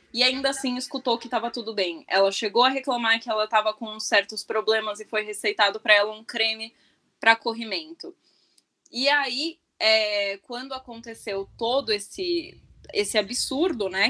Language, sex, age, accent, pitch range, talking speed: Portuguese, female, 10-29, Brazilian, 205-255 Hz, 155 wpm